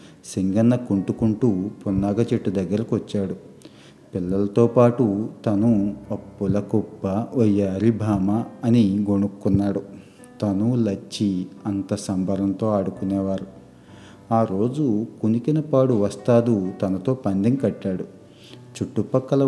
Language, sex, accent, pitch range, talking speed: Telugu, male, native, 100-115 Hz, 85 wpm